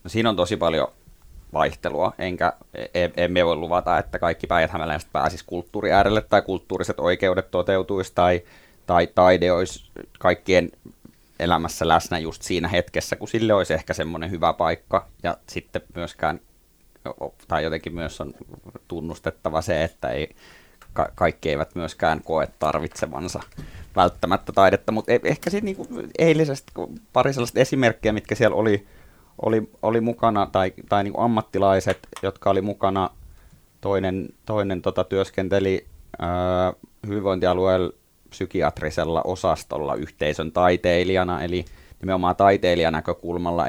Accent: native